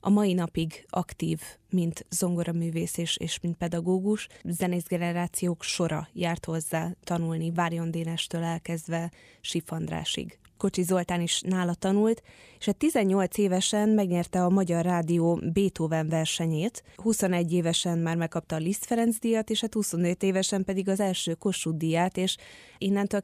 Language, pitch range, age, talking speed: Hungarian, 165-185 Hz, 20-39, 135 wpm